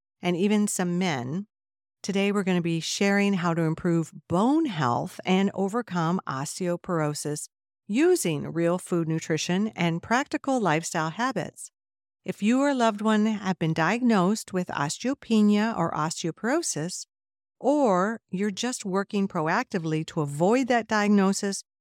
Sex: female